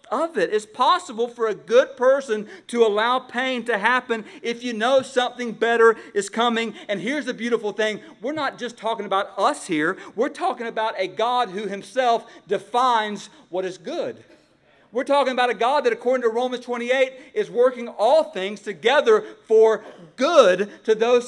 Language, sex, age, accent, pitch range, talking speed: English, male, 40-59, American, 185-245 Hz, 170 wpm